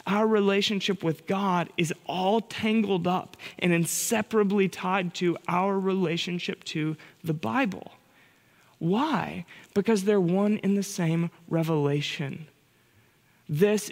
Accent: American